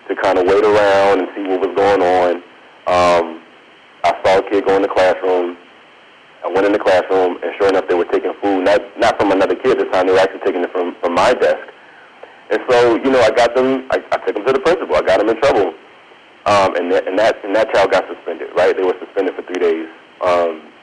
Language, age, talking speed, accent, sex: English, 30-49, 250 wpm, American, male